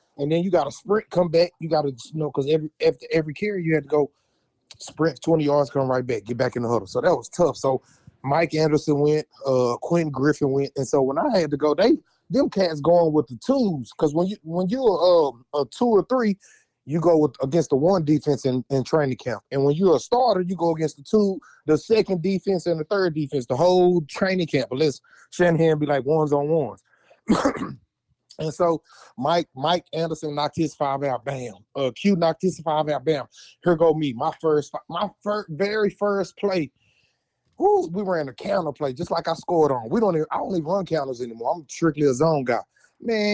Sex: male